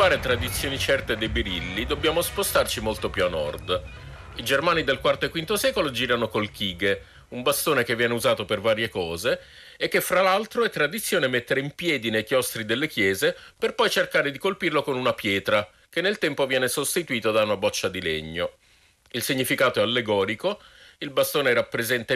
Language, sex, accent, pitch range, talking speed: Italian, male, native, 115-180 Hz, 180 wpm